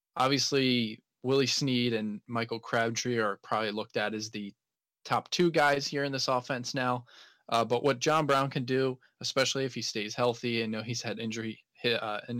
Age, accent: 20-39, American